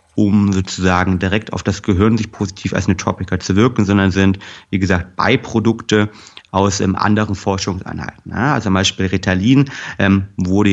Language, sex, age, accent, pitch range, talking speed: German, male, 30-49, German, 95-110 Hz, 145 wpm